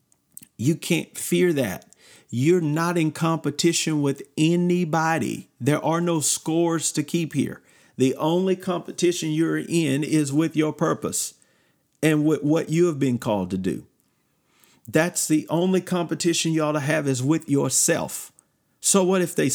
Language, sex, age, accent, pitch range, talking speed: English, male, 50-69, American, 145-170 Hz, 155 wpm